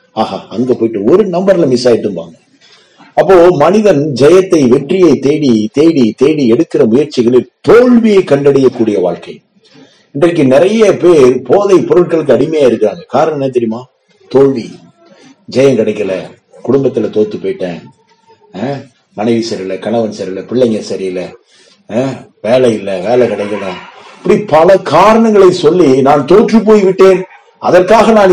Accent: native